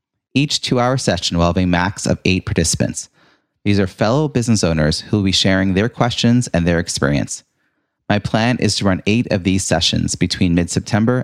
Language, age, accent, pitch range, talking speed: English, 30-49, American, 90-120 Hz, 185 wpm